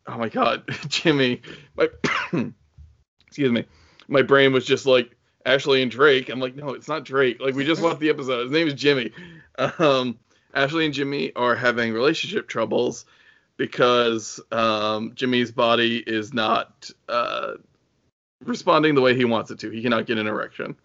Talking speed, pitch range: 165 wpm, 115-140 Hz